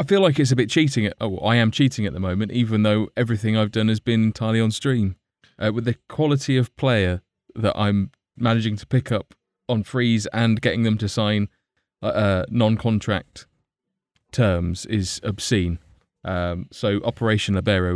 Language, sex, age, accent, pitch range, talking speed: English, male, 20-39, British, 95-120 Hz, 175 wpm